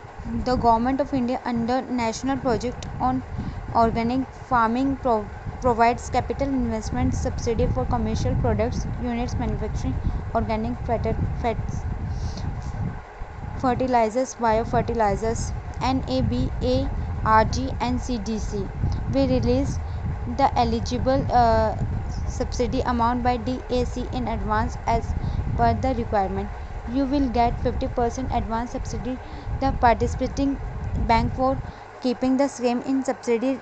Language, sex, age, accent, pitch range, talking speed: English, female, 20-39, Indian, 215-255 Hz, 105 wpm